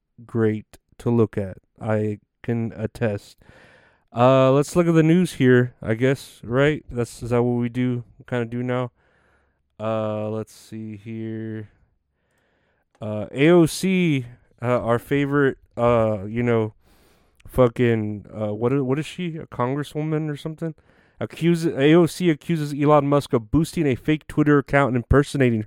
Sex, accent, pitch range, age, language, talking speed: male, American, 115-145 Hz, 30-49, English, 145 wpm